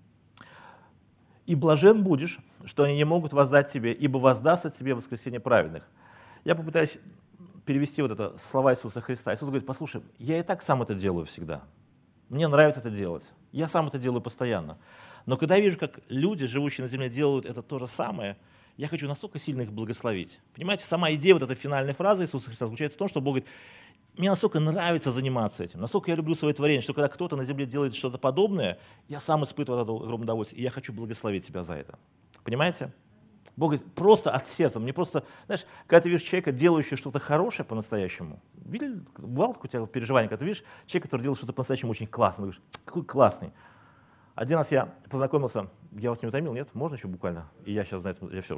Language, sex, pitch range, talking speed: Russian, male, 115-155 Hz, 200 wpm